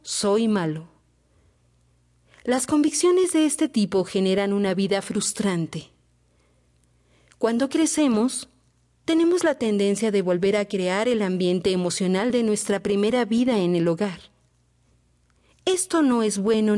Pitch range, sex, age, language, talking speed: 165-230 Hz, female, 40-59, Spanish, 120 wpm